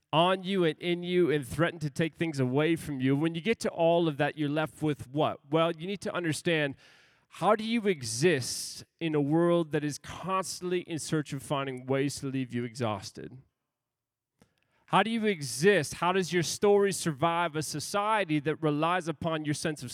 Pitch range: 145-180 Hz